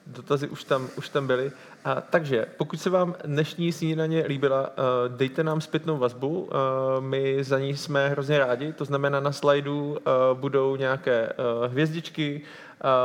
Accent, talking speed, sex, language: native, 145 wpm, male, Czech